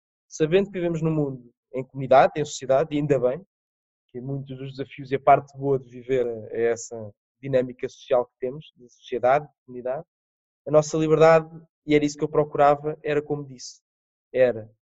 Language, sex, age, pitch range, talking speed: Portuguese, male, 20-39, 135-165 Hz, 180 wpm